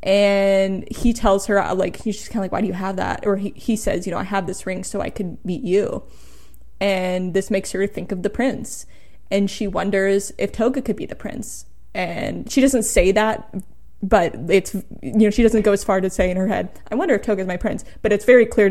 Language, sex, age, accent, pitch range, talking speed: English, female, 10-29, American, 190-220 Hz, 245 wpm